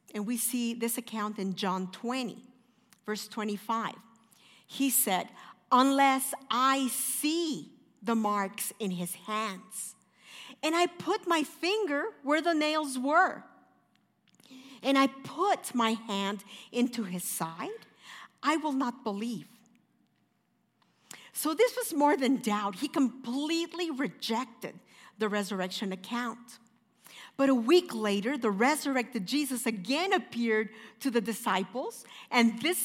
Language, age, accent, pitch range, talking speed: English, 50-69, American, 215-285 Hz, 120 wpm